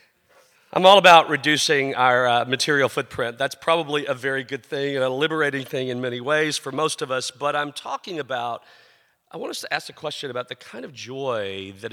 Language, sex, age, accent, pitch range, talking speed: English, male, 40-59, American, 130-155 Hz, 210 wpm